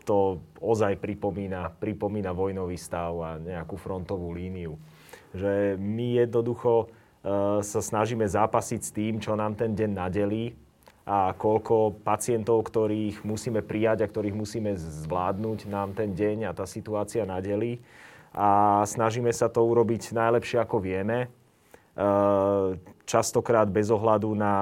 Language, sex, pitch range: Slovak, male, 100-115 Hz